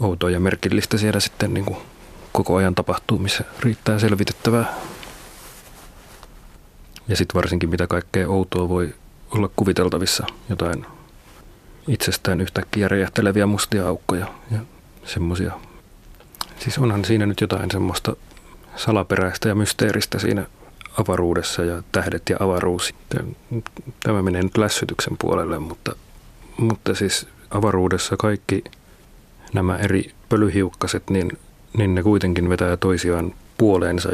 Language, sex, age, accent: Finnish, male, 30-49, native